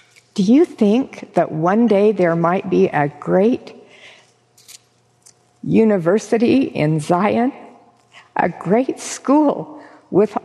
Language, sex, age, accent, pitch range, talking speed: English, female, 50-69, American, 185-235 Hz, 105 wpm